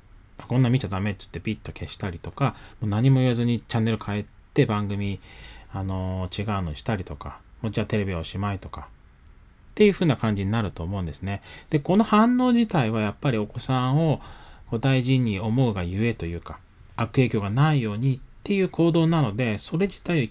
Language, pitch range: Japanese, 105-160 Hz